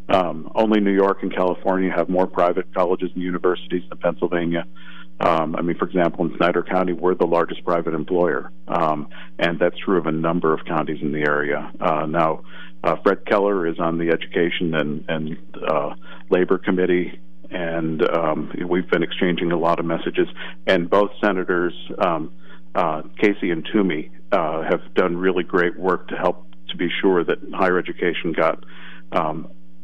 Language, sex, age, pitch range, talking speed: English, male, 50-69, 75-90 Hz, 175 wpm